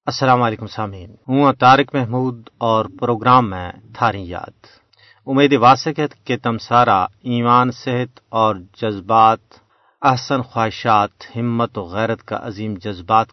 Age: 40-59